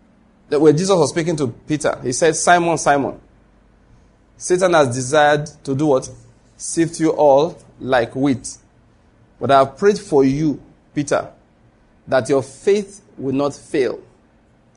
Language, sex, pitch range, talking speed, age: English, male, 115-180 Hz, 140 wpm, 40-59